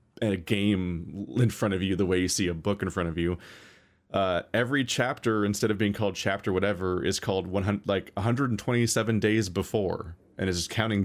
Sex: male